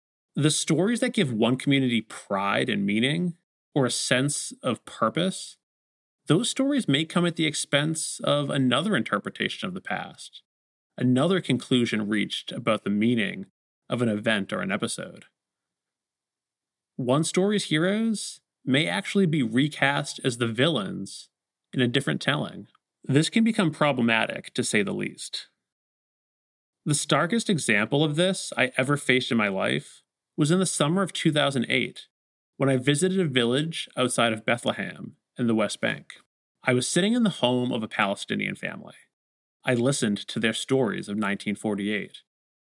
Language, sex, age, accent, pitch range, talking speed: English, male, 30-49, American, 115-160 Hz, 150 wpm